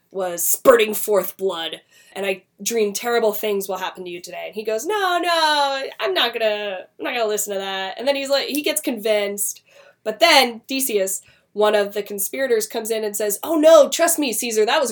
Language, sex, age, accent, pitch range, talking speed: English, female, 20-39, American, 190-250 Hz, 215 wpm